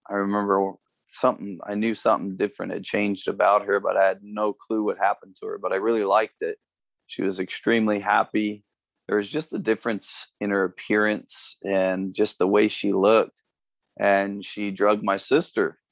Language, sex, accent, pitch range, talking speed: English, male, American, 100-115 Hz, 180 wpm